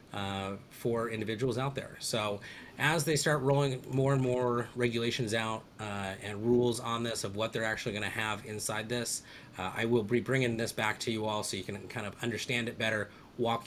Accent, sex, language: American, male, English